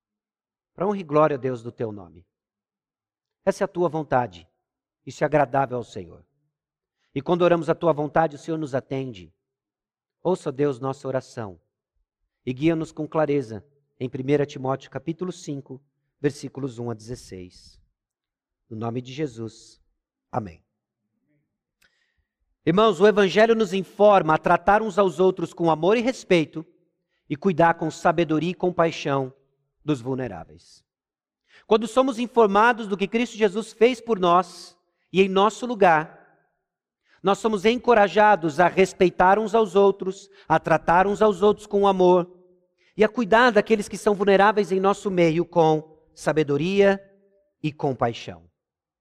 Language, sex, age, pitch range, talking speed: Portuguese, male, 50-69, 140-200 Hz, 140 wpm